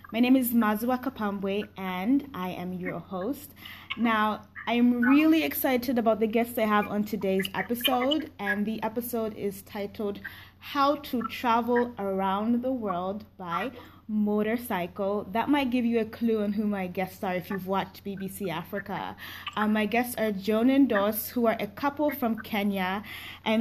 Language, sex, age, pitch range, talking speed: English, female, 20-39, 200-240 Hz, 165 wpm